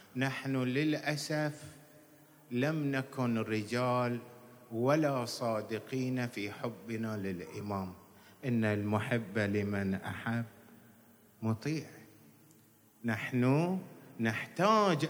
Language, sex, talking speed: Arabic, male, 70 wpm